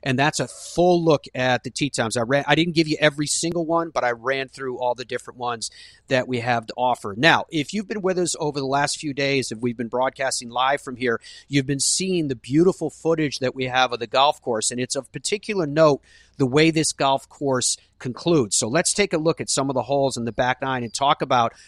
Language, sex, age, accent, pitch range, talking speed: English, male, 40-59, American, 130-165 Hz, 250 wpm